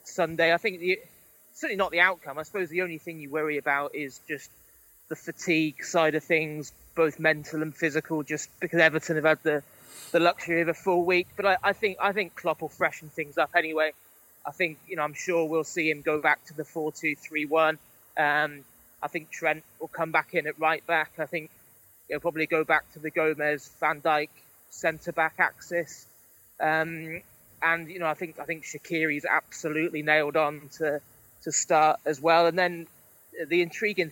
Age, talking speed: 20-39, 195 wpm